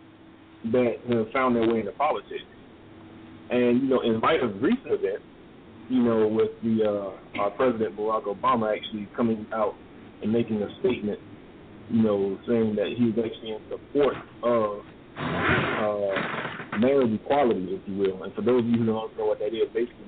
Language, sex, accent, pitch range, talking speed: English, male, American, 105-125 Hz, 180 wpm